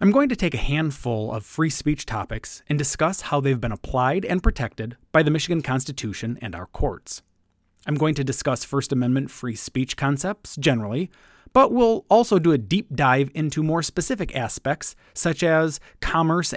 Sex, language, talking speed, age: male, English, 180 wpm, 30-49